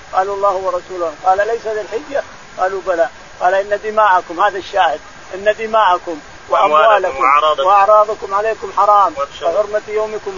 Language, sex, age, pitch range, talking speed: Arabic, male, 50-69, 185-220 Hz, 120 wpm